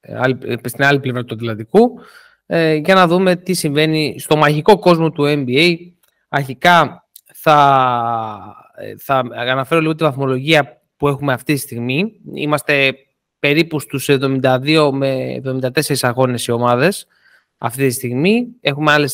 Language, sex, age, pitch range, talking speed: Greek, male, 20-39, 140-210 Hz, 130 wpm